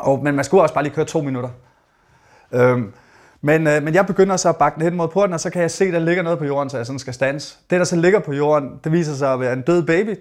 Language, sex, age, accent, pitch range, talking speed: Danish, male, 30-49, native, 135-170 Hz, 300 wpm